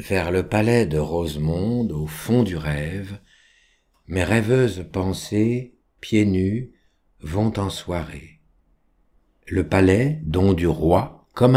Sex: male